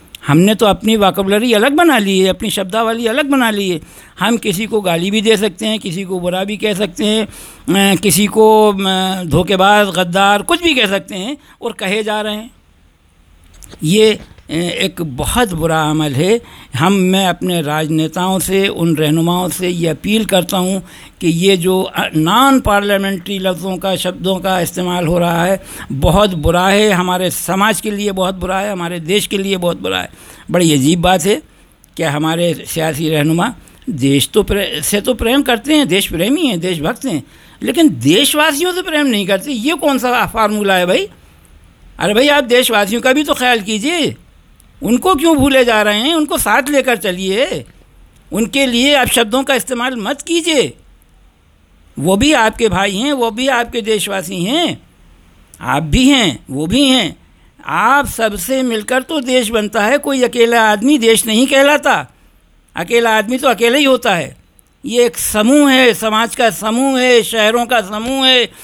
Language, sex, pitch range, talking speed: Hindi, male, 180-245 Hz, 175 wpm